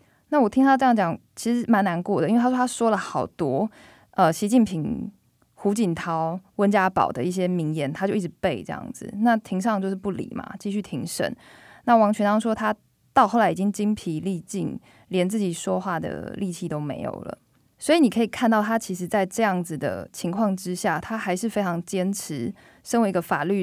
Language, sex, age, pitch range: Chinese, female, 20-39, 175-220 Hz